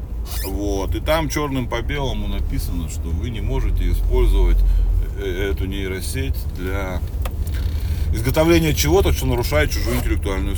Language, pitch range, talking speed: Russian, 75-85 Hz, 120 wpm